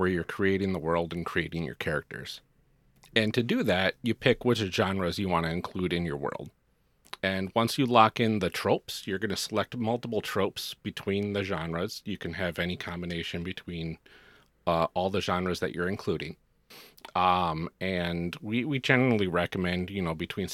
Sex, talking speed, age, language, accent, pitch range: male, 180 wpm, 40-59, English, American, 85-110 Hz